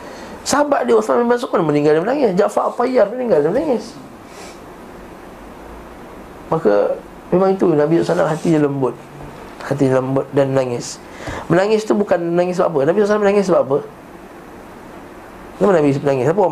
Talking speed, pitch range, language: 155 wpm, 135-185 Hz, Malay